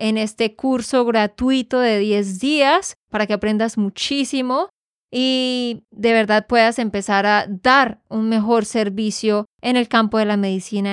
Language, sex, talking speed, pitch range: Spanish, female, 150 wpm, 215-260 Hz